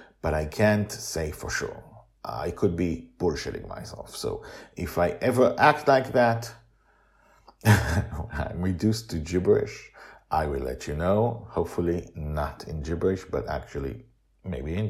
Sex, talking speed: male, 140 wpm